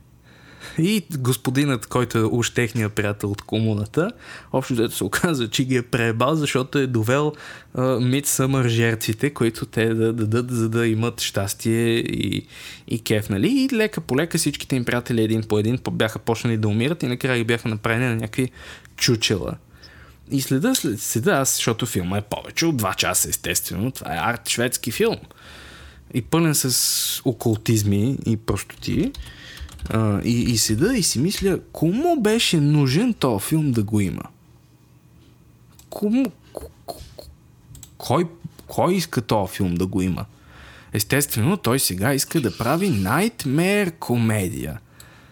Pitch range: 110-140 Hz